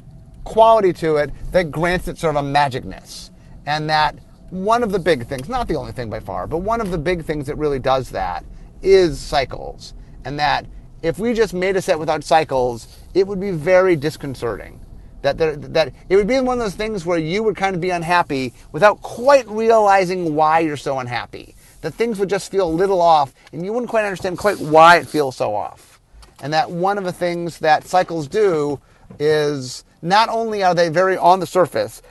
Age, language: 30-49, English